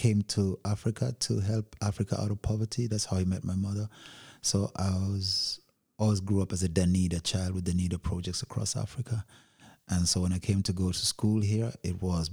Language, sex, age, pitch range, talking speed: Danish, male, 30-49, 85-105 Hz, 210 wpm